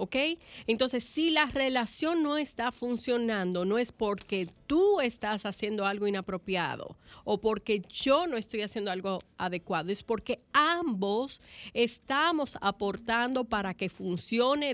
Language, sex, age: Spanish, female, 40-59